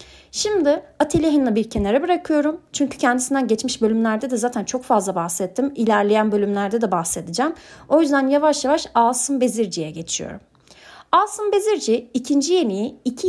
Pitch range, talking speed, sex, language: 210-310 Hz, 135 wpm, female, Turkish